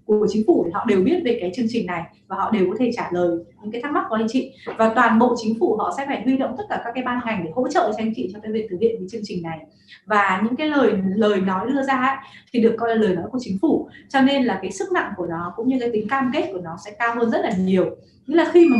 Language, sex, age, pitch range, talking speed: Vietnamese, female, 20-39, 215-270 Hz, 325 wpm